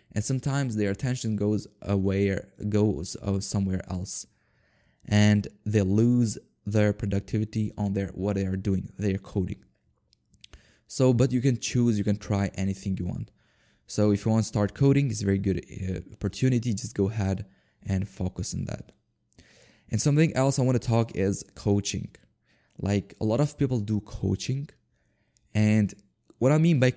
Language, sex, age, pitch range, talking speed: English, male, 20-39, 100-120 Hz, 165 wpm